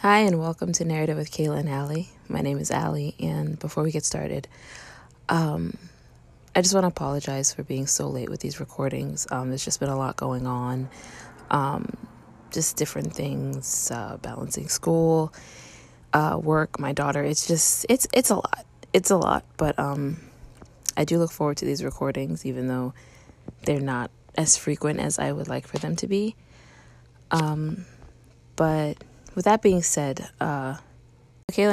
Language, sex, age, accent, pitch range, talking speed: English, female, 20-39, American, 125-165 Hz, 170 wpm